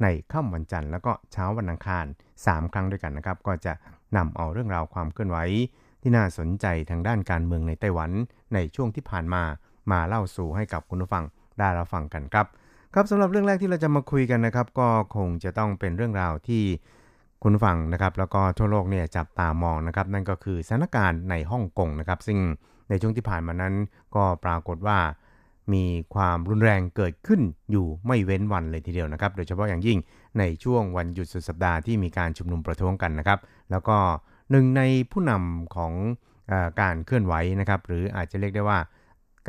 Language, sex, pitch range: Thai, male, 85-110 Hz